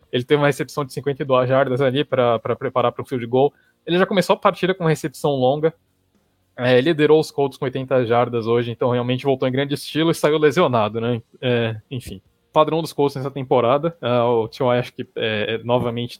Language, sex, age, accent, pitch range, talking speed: English, male, 20-39, Brazilian, 120-140 Hz, 210 wpm